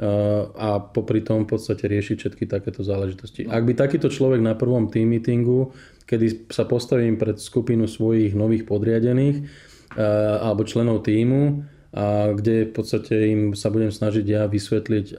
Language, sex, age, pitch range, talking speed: Slovak, male, 20-39, 105-115 Hz, 155 wpm